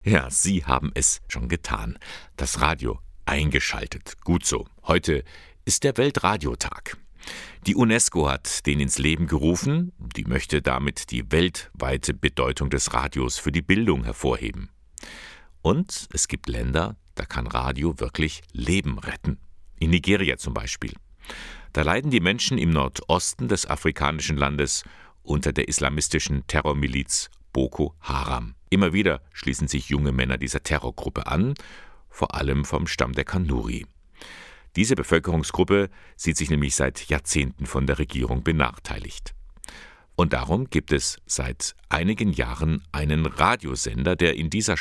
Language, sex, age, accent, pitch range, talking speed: German, male, 60-79, German, 70-80 Hz, 135 wpm